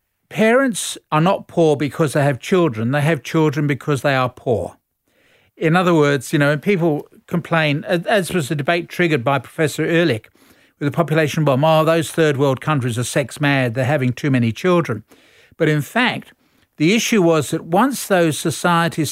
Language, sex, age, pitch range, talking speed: English, male, 50-69, 150-180 Hz, 180 wpm